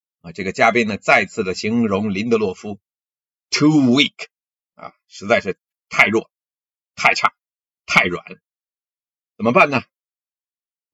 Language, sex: Chinese, male